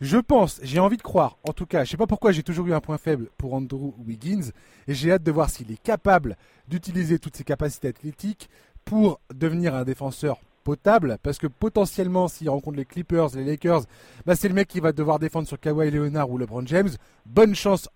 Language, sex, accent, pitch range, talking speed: French, male, French, 130-180 Hz, 215 wpm